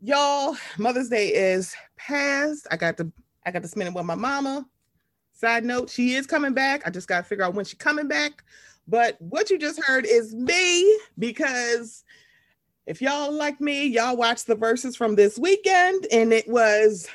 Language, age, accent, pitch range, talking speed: English, 30-49, American, 215-295 Hz, 190 wpm